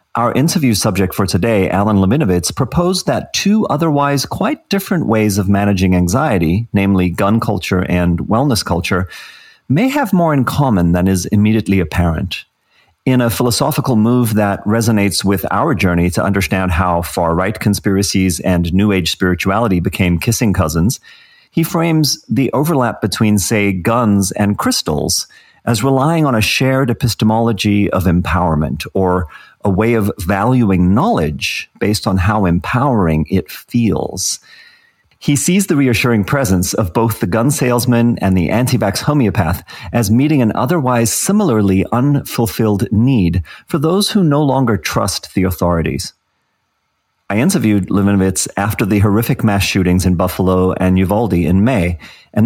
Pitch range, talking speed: 95-130 Hz, 145 wpm